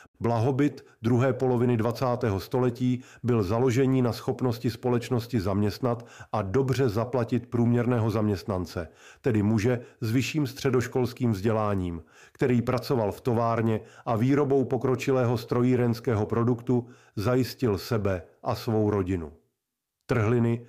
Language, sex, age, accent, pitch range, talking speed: Czech, male, 40-59, native, 110-125 Hz, 105 wpm